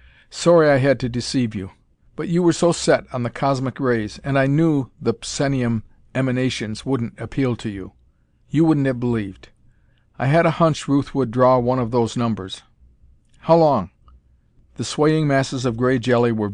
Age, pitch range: 50-69, 110-135 Hz